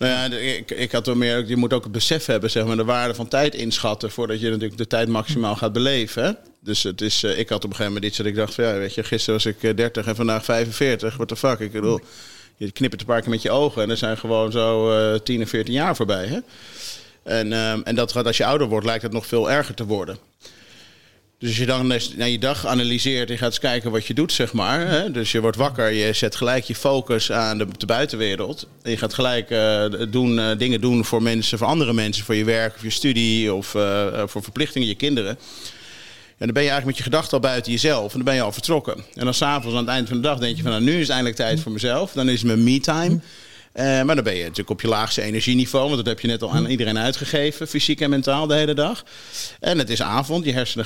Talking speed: 265 wpm